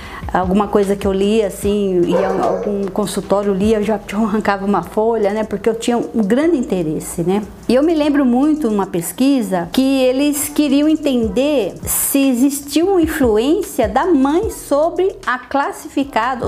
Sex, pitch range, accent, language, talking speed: female, 210-290 Hz, Brazilian, Portuguese, 155 wpm